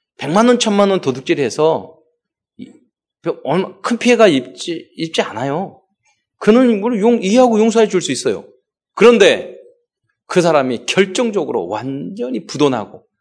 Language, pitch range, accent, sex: Korean, 145-235 Hz, native, male